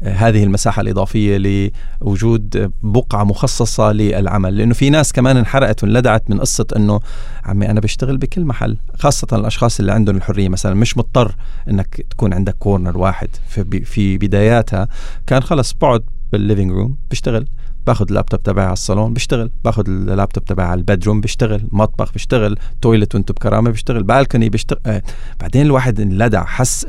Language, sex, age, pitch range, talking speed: Arabic, male, 30-49, 105-125 Hz, 150 wpm